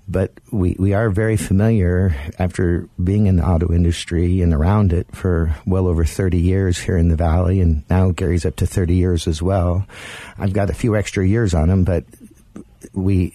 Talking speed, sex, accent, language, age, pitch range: 195 wpm, male, American, English, 50-69, 90-105 Hz